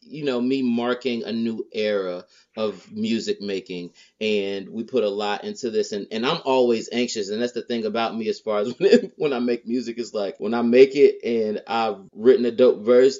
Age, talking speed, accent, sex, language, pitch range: 30-49, 225 wpm, American, male, English, 105-125 Hz